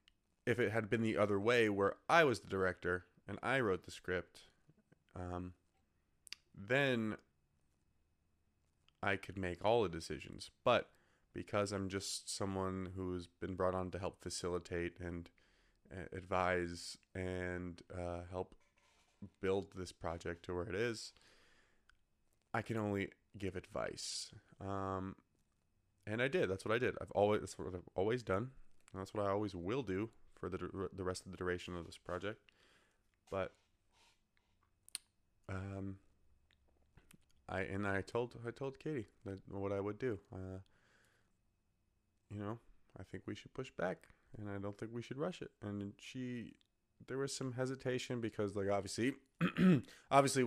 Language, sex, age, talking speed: English, male, 20-39, 150 wpm